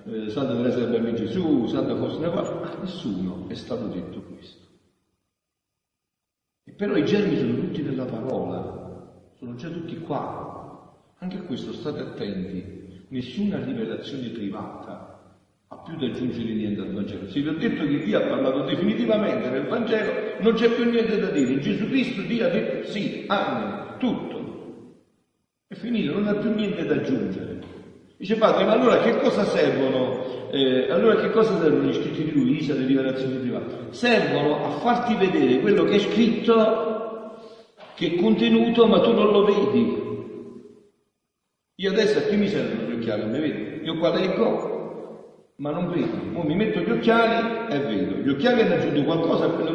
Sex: male